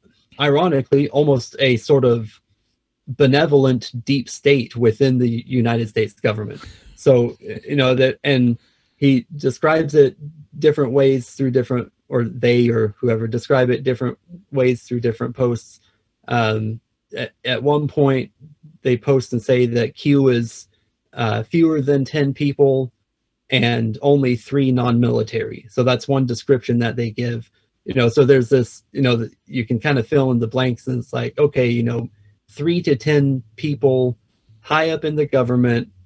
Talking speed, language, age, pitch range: 155 wpm, English, 30-49, 115-140 Hz